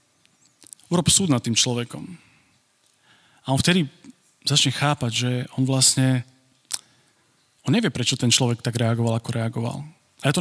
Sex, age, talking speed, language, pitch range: male, 40-59, 145 wpm, Slovak, 120-145 Hz